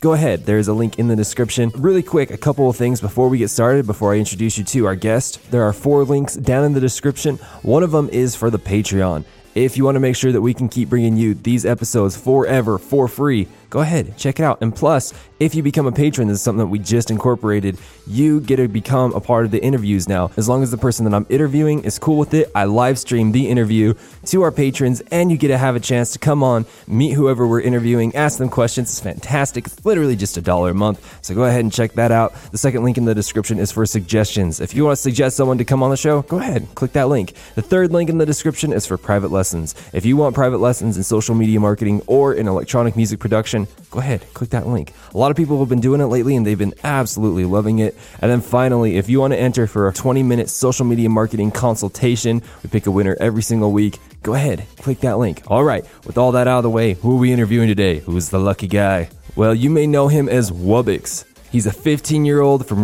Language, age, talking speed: English, 20-39, 255 wpm